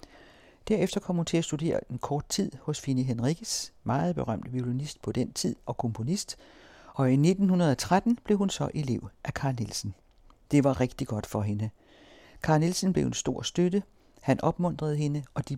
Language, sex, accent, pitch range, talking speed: Danish, male, native, 125-160 Hz, 180 wpm